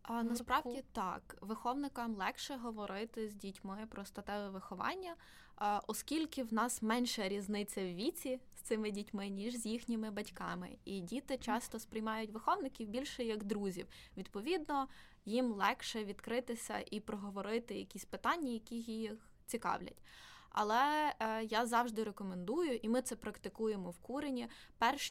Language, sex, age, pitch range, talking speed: Ukrainian, female, 20-39, 200-245 Hz, 130 wpm